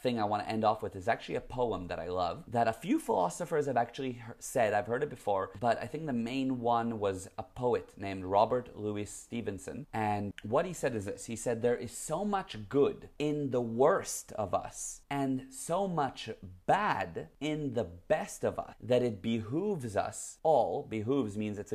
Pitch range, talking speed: 105-140 Hz, 200 wpm